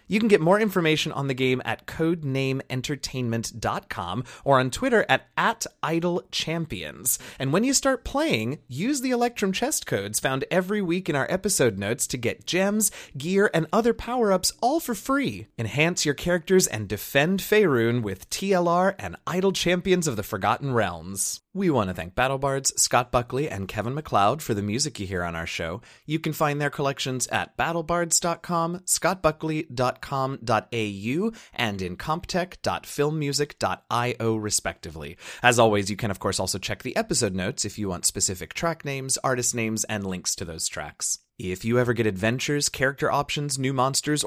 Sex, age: male, 30-49